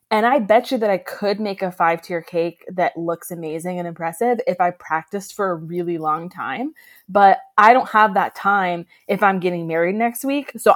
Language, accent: English, American